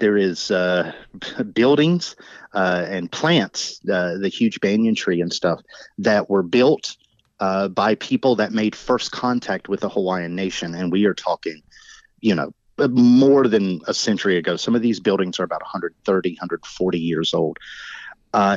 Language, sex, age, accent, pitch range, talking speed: English, male, 30-49, American, 90-120 Hz, 160 wpm